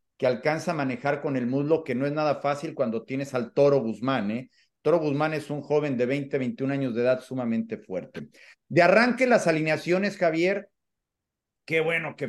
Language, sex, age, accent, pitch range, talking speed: Spanish, male, 40-59, Mexican, 135-170 Hz, 190 wpm